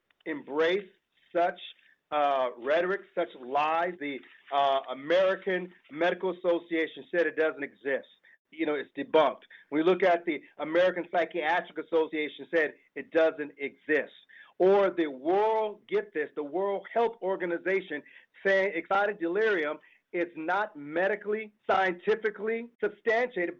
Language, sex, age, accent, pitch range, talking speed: English, male, 40-59, American, 160-195 Hz, 120 wpm